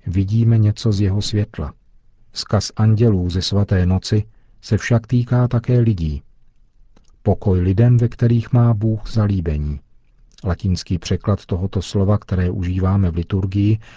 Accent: native